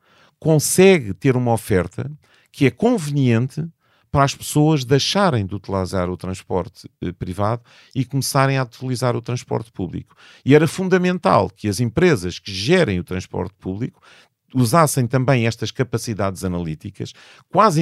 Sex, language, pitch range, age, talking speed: male, Portuguese, 100-140 Hz, 40-59, 135 wpm